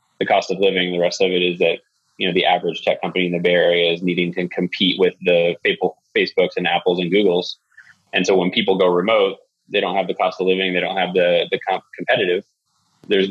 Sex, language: male, English